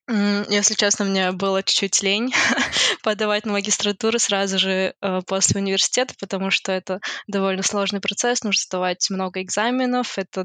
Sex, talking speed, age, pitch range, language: female, 140 wpm, 20-39, 190-210 Hz, Russian